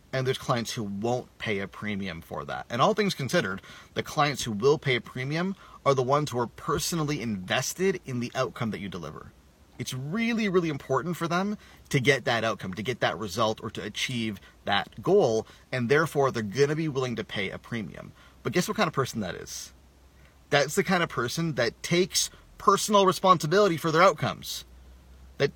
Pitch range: 115-165 Hz